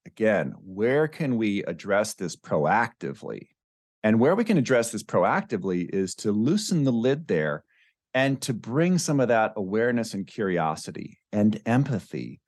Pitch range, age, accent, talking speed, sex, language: 115-185 Hz, 40-59, American, 150 wpm, male, English